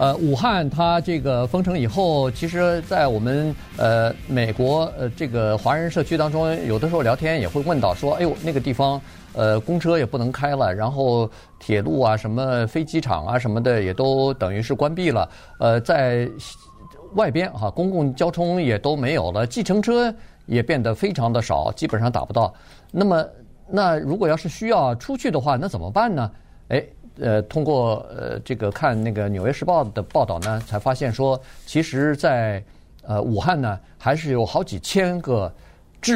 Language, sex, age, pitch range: Chinese, male, 50-69, 110-160 Hz